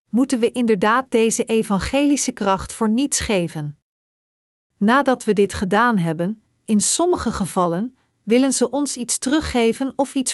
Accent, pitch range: Dutch, 190-250 Hz